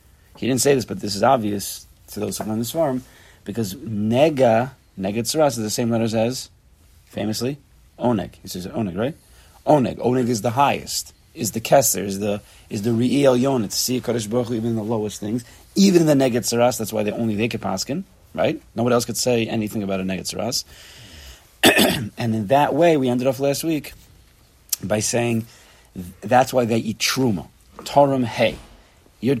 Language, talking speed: English, 180 wpm